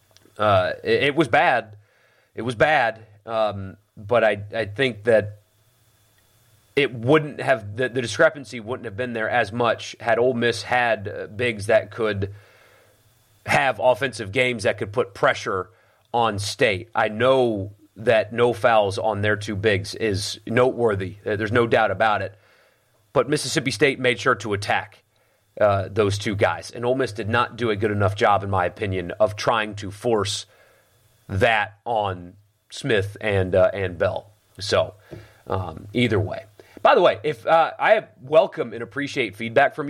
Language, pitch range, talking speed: English, 105-130 Hz, 160 wpm